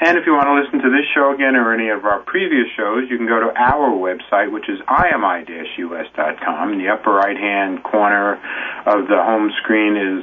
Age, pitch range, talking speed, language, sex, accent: 40-59, 110-150 Hz, 210 wpm, English, male, American